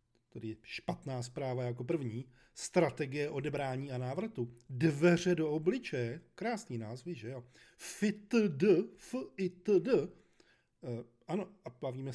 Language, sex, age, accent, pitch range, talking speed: Czech, male, 40-59, native, 120-170 Hz, 115 wpm